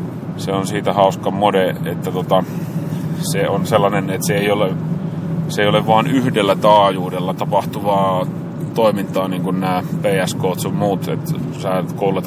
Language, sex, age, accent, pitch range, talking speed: Finnish, male, 30-49, native, 135-170 Hz, 140 wpm